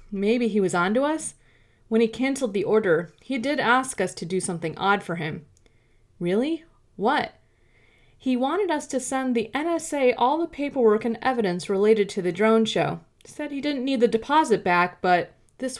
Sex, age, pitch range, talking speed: female, 30-49, 170-255 Hz, 185 wpm